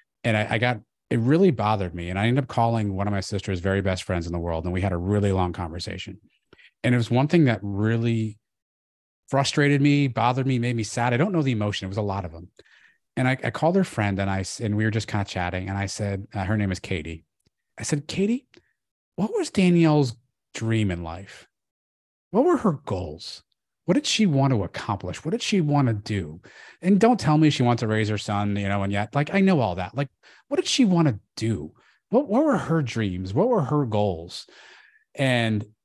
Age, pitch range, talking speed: 30-49, 100-140 Hz, 235 wpm